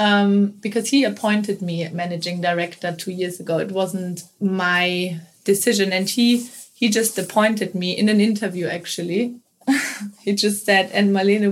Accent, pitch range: German, 185-210 Hz